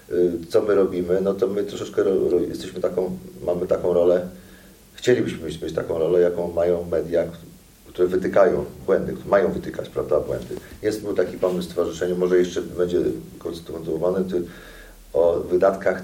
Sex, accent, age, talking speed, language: male, native, 40-59, 140 wpm, Polish